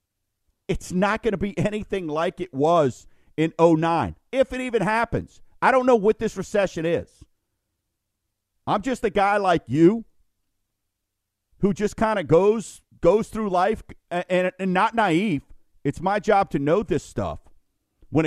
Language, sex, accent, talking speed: English, male, American, 160 wpm